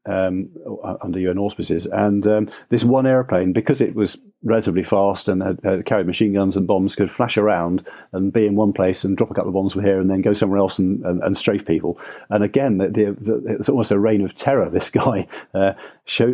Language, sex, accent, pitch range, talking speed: English, male, British, 95-110 Hz, 230 wpm